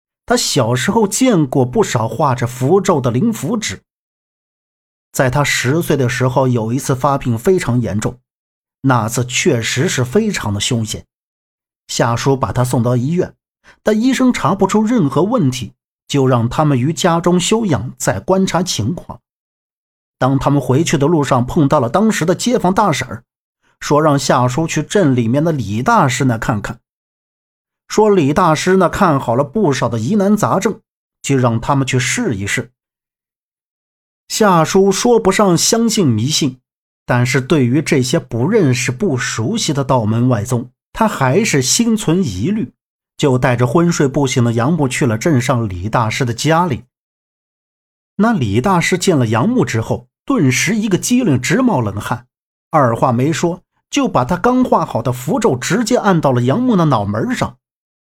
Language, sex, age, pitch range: Chinese, male, 50-69, 125-185 Hz